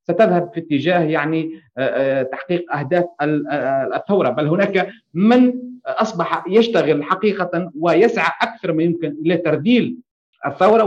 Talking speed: 110 wpm